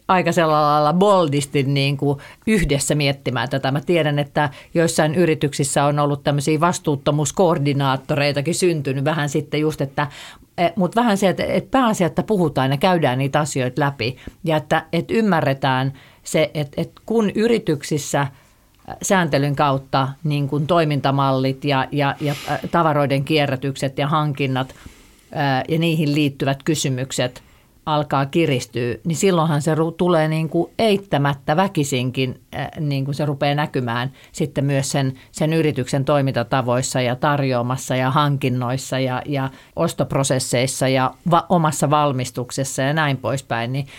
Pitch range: 135-160 Hz